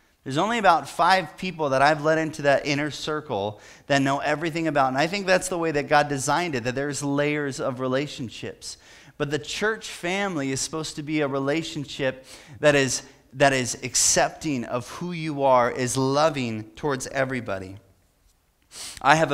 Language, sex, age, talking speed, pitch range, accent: English, male, 30-49, 175 wpm, 135-175 Hz, American